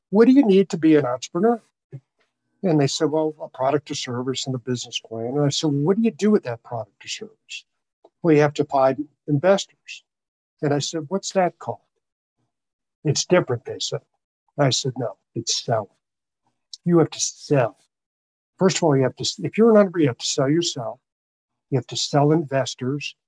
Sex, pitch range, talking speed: male, 130-170 Hz, 205 wpm